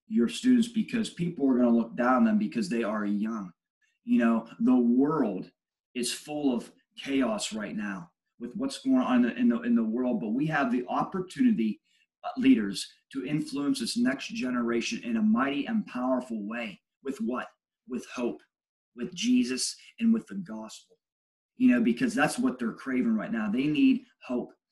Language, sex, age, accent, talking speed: English, male, 30-49, American, 180 wpm